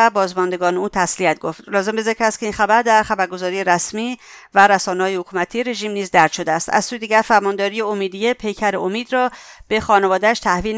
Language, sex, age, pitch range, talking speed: English, female, 50-69, 185-225 Hz, 185 wpm